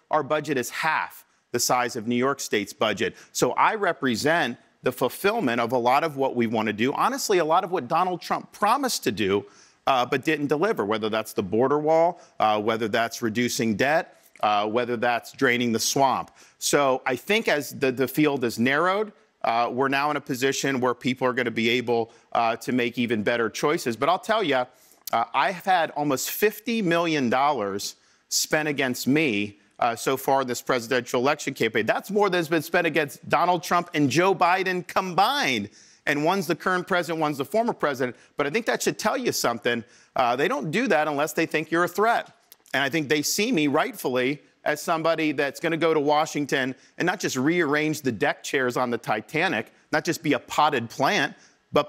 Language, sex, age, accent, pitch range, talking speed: English, male, 50-69, American, 125-165 Hz, 200 wpm